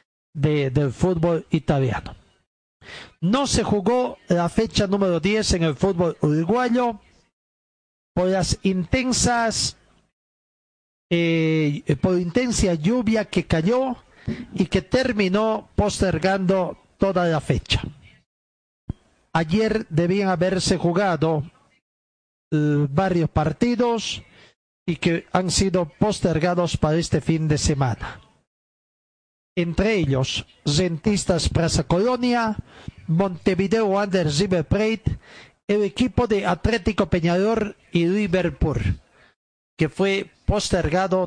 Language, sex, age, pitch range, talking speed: Spanish, male, 40-59, 160-210 Hz, 95 wpm